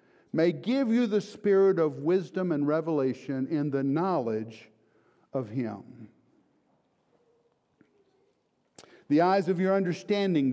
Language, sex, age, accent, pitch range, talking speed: English, male, 50-69, American, 135-185 Hz, 110 wpm